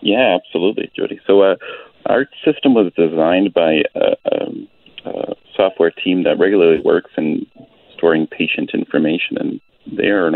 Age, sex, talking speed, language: 40-59, male, 145 wpm, English